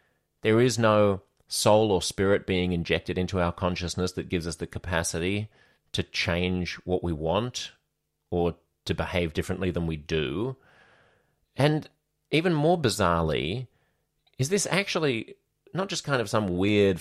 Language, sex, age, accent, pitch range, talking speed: English, male, 30-49, Australian, 85-105 Hz, 145 wpm